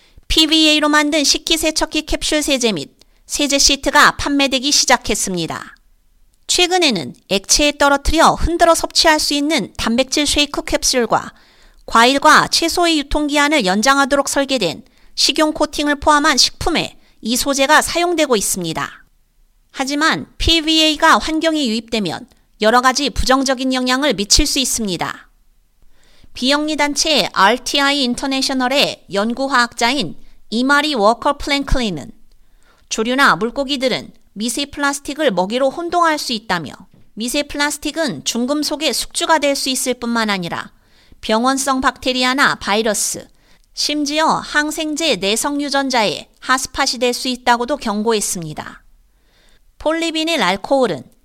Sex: female